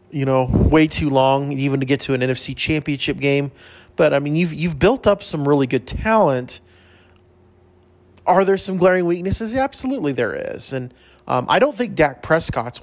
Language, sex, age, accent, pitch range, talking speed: English, male, 30-49, American, 130-190 Hz, 180 wpm